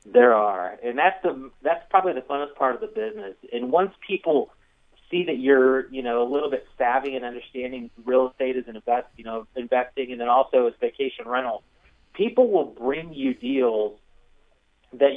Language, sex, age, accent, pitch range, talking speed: English, male, 40-59, American, 125-180 Hz, 180 wpm